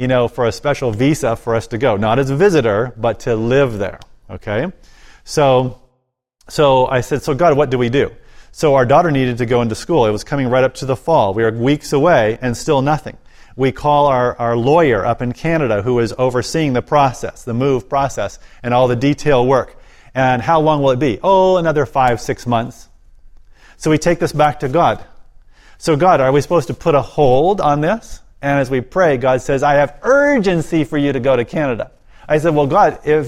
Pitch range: 125-155 Hz